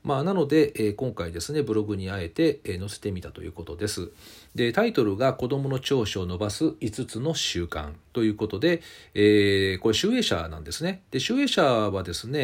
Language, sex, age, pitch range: Japanese, male, 40-59, 95-155 Hz